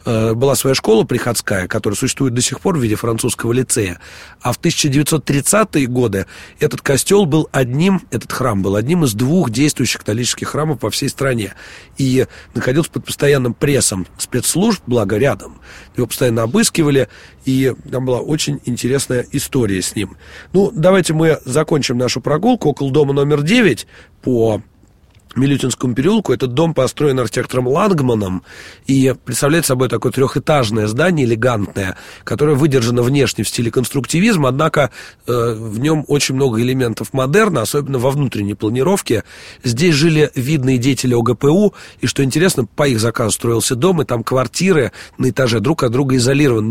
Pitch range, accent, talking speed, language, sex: 115-145 Hz, native, 150 wpm, Russian, male